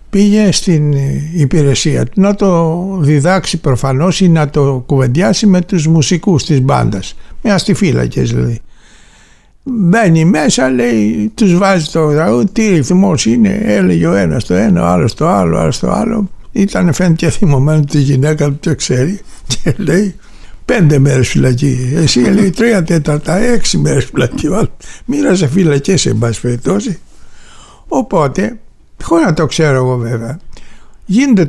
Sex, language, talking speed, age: male, Greek, 145 wpm, 60-79